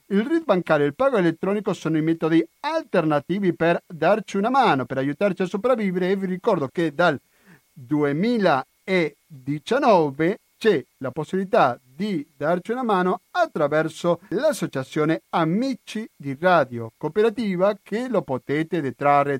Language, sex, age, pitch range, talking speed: Italian, male, 50-69, 135-180 Hz, 130 wpm